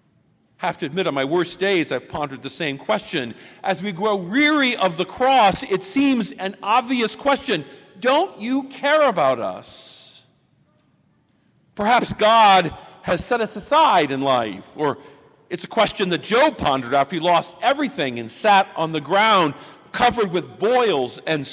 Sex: male